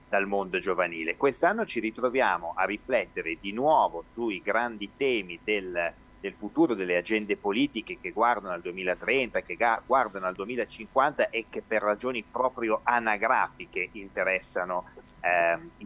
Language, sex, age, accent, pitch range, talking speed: Italian, male, 30-49, native, 90-110 Hz, 130 wpm